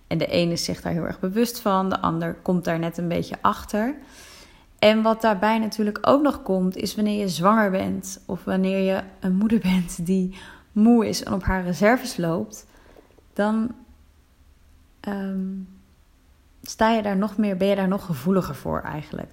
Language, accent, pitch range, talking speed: Dutch, Dutch, 170-205 Hz, 175 wpm